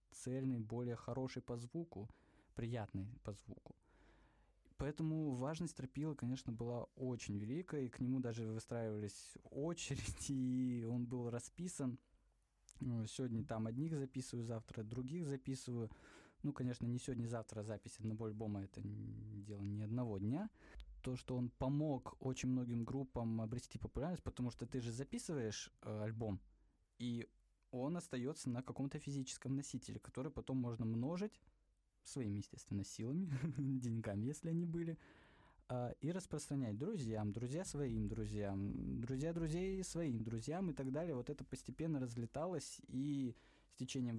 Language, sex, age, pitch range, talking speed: Russian, male, 20-39, 110-135 Hz, 135 wpm